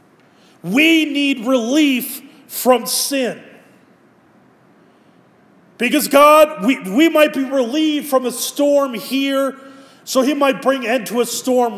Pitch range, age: 210-270 Hz, 30-49